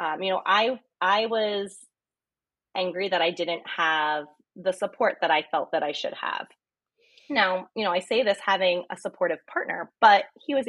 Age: 20-39